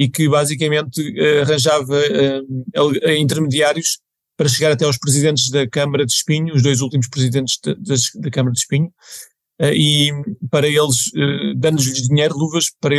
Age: 50-69